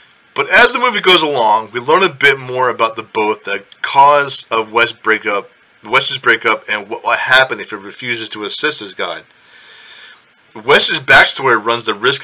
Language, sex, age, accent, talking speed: English, male, 30-49, American, 175 wpm